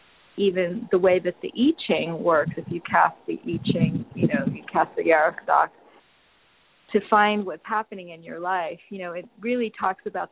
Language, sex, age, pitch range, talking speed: English, female, 40-59, 170-205 Hz, 190 wpm